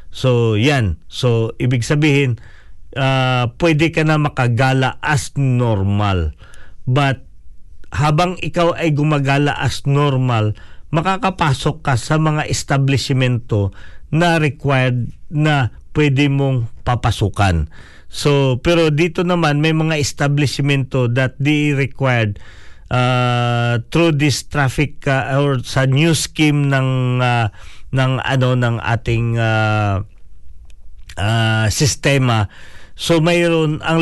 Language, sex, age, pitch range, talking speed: English, male, 40-59, 110-145 Hz, 110 wpm